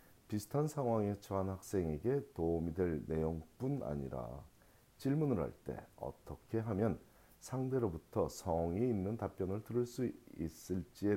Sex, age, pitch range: male, 40-59, 80-115 Hz